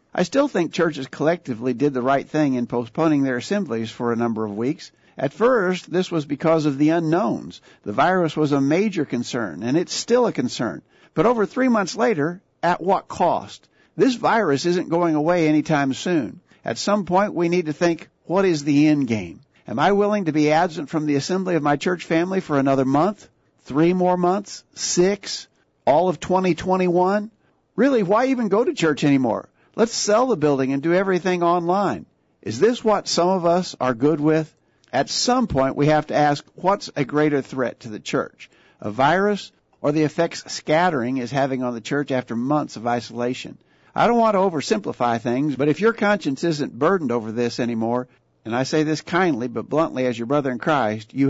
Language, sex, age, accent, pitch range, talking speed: English, male, 50-69, American, 130-180 Hz, 195 wpm